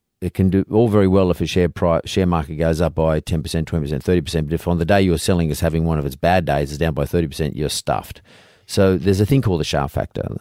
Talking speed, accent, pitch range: 265 wpm, Australian, 75-90 Hz